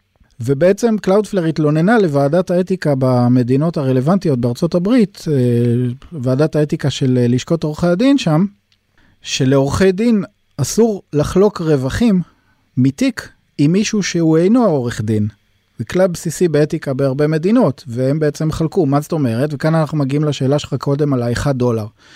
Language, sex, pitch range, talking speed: Hebrew, male, 125-175 Hz, 130 wpm